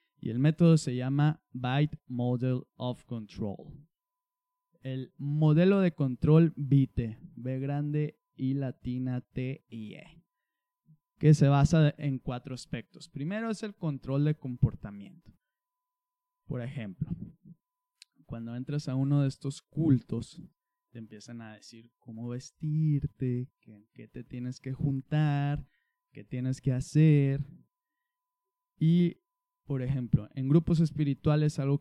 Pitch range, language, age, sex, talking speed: 130-170 Hz, Spanish, 20-39, male, 120 wpm